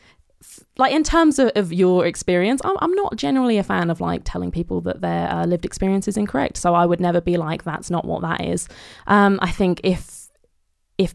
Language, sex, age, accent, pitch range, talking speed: English, female, 20-39, British, 170-190 Hz, 215 wpm